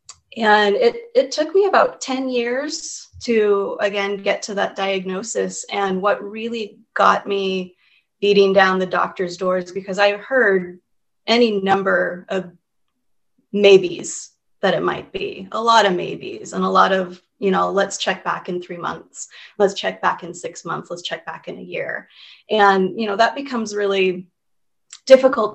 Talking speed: 165 wpm